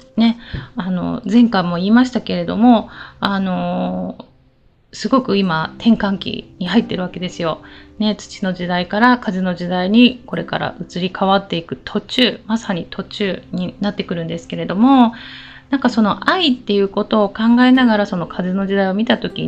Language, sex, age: Japanese, female, 20-39